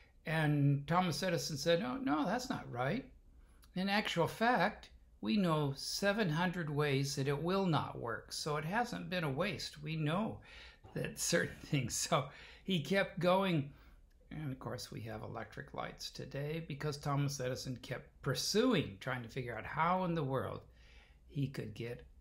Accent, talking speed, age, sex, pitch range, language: American, 160 wpm, 60-79, male, 115-160 Hz, English